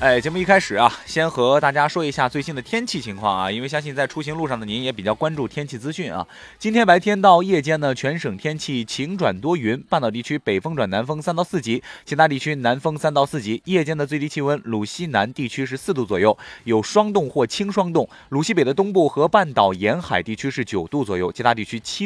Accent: native